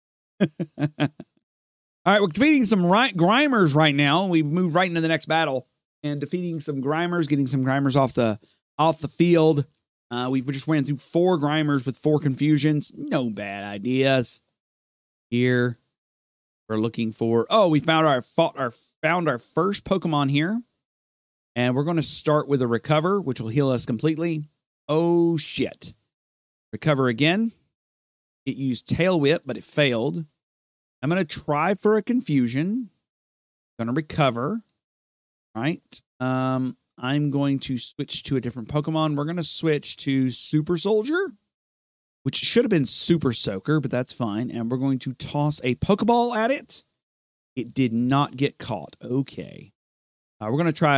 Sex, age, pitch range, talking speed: male, 30-49, 120-165 Hz, 155 wpm